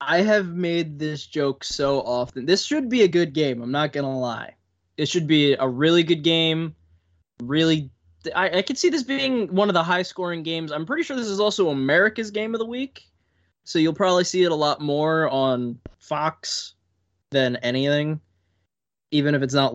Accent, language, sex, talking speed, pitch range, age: American, English, male, 200 wpm, 125-185 Hz, 20-39